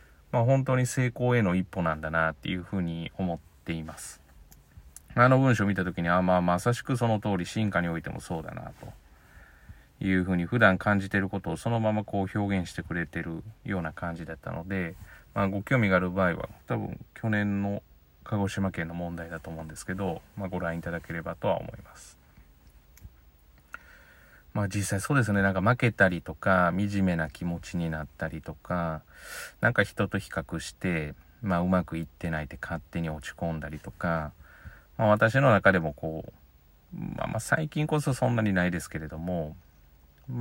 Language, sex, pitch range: Japanese, male, 80-105 Hz